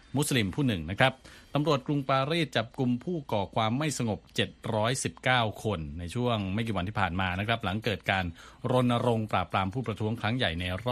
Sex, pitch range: male, 95-125 Hz